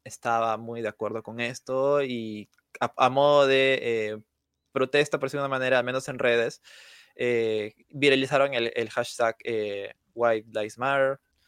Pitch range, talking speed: 115-145 Hz, 155 wpm